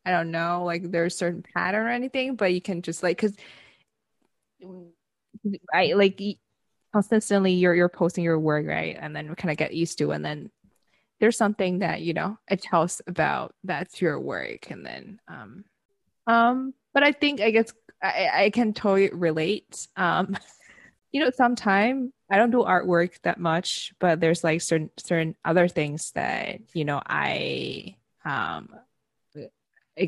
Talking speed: 170 wpm